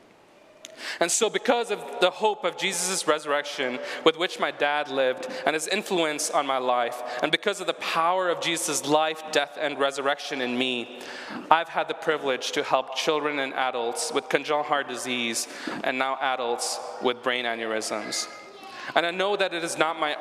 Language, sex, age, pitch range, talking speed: English, male, 20-39, 130-165 Hz, 180 wpm